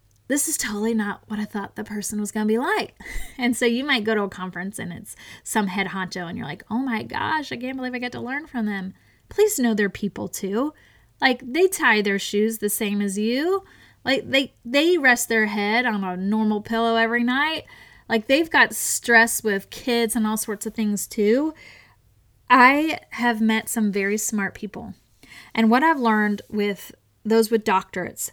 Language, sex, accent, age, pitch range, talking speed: English, female, American, 20-39, 210-255 Hz, 200 wpm